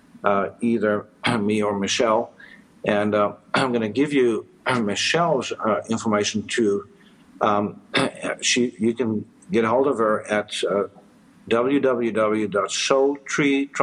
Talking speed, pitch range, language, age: 135 wpm, 105-130 Hz, English, 60-79